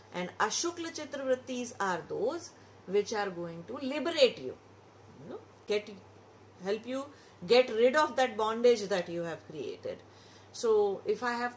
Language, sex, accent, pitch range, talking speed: English, female, Indian, 185-235 Hz, 150 wpm